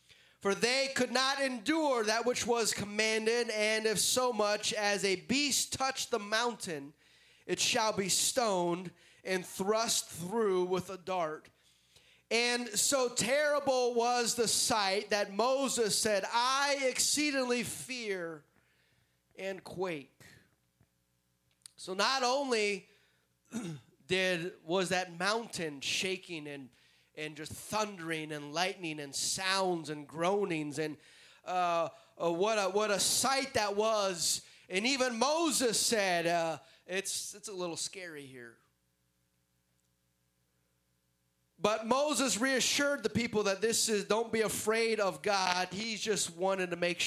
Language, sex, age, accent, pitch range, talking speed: English, male, 30-49, American, 165-225 Hz, 125 wpm